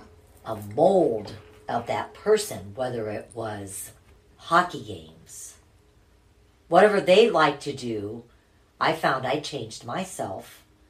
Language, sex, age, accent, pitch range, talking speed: English, female, 50-69, American, 105-145 Hz, 110 wpm